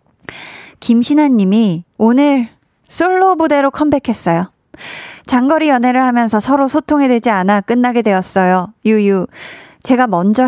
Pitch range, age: 195-270 Hz, 20-39